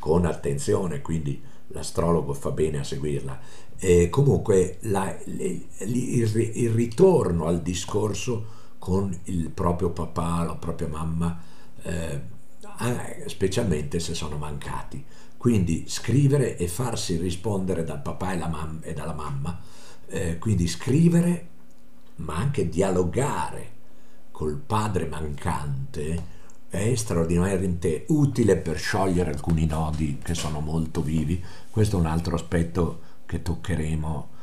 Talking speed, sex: 115 wpm, male